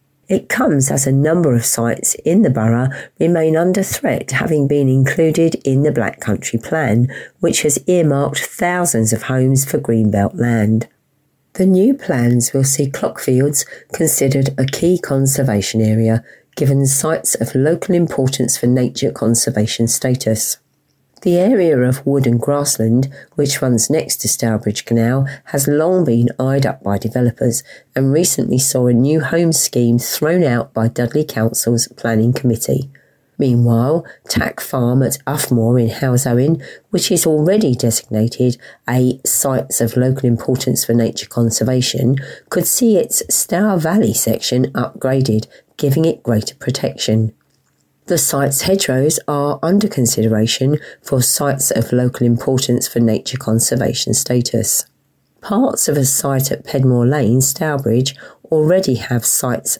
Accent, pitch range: British, 120-145 Hz